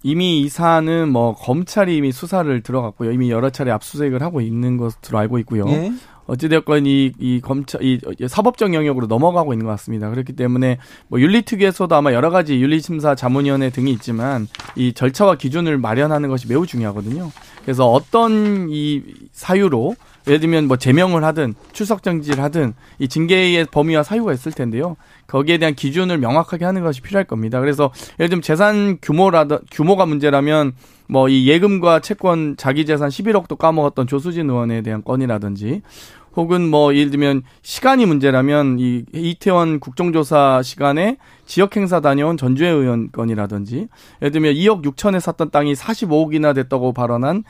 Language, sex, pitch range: Korean, male, 130-175 Hz